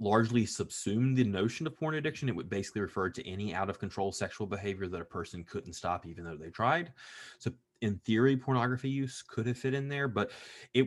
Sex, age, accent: male, 20-39, American